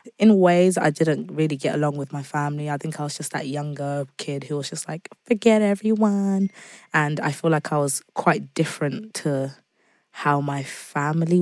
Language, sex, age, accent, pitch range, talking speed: English, female, 20-39, British, 140-165 Hz, 190 wpm